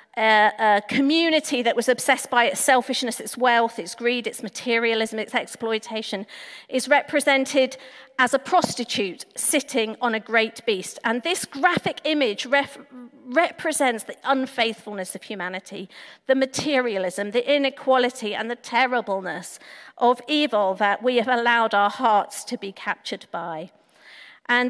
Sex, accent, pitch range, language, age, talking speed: female, British, 220-265 Hz, English, 40-59, 135 wpm